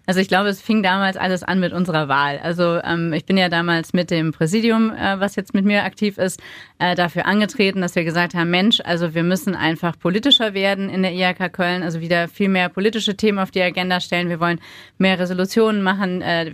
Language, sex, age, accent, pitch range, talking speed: German, female, 30-49, German, 160-200 Hz, 220 wpm